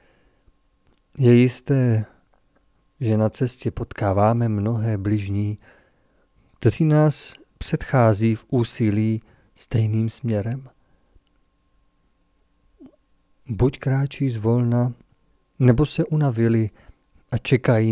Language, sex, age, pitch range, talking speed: Czech, male, 40-59, 100-130 Hz, 75 wpm